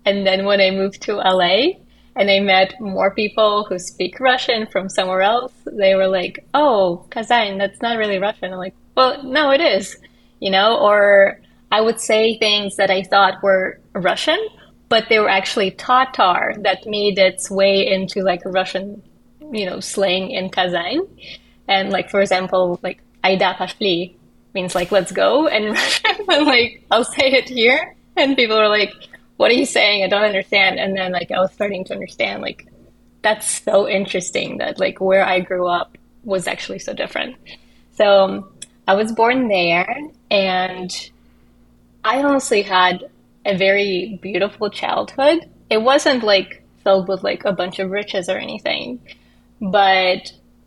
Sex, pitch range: female, 185-225 Hz